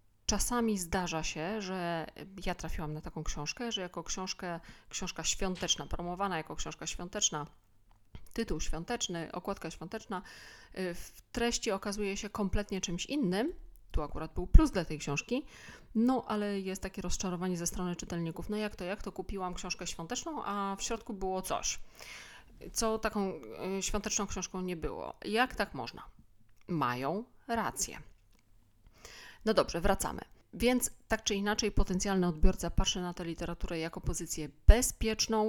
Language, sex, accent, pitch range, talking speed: Polish, female, native, 170-210 Hz, 140 wpm